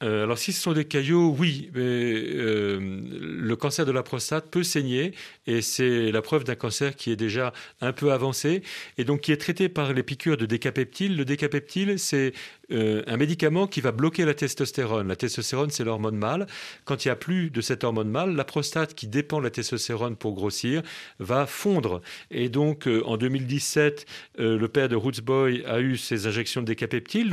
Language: French